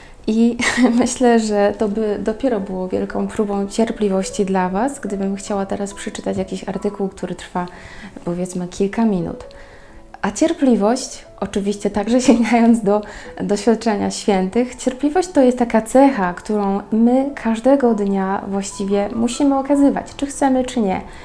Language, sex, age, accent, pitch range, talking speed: Polish, female, 20-39, native, 200-245 Hz, 135 wpm